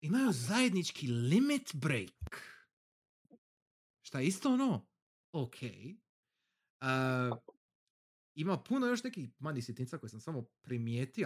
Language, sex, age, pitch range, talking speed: Croatian, male, 40-59, 120-155 Hz, 105 wpm